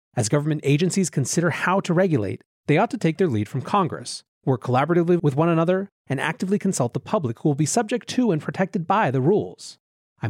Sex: male